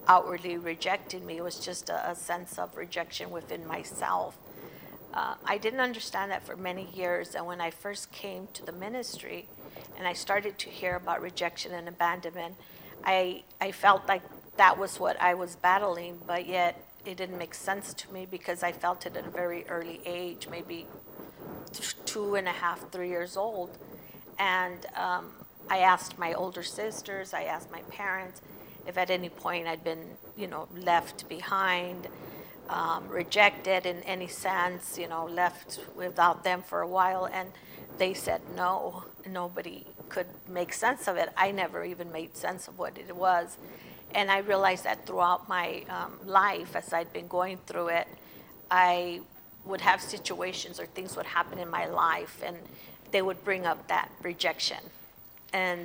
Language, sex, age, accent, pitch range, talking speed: English, female, 50-69, American, 175-190 Hz, 170 wpm